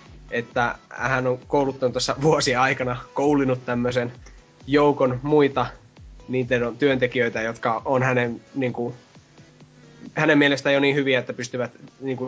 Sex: male